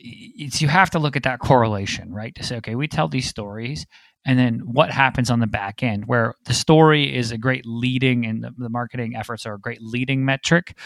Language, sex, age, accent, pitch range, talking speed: English, male, 20-39, American, 110-135 Hz, 225 wpm